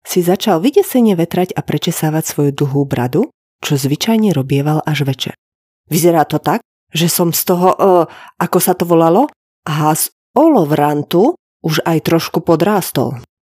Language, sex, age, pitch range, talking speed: Slovak, female, 30-49, 155-245 Hz, 140 wpm